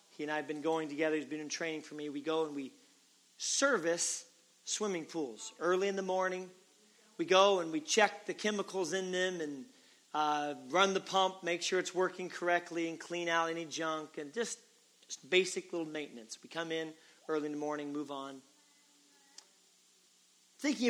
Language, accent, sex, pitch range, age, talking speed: English, American, male, 145-185 Hz, 40-59, 185 wpm